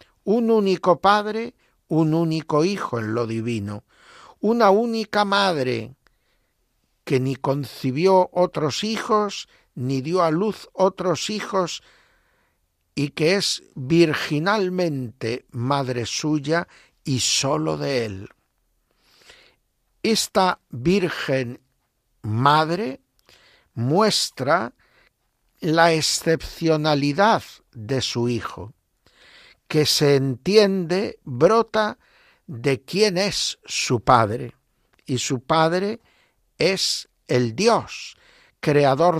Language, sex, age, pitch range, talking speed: Spanish, male, 60-79, 125-185 Hz, 90 wpm